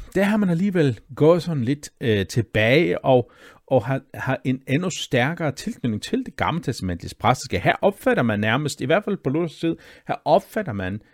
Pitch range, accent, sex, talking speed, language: 110-160 Hz, native, male, 185 wpm, Danish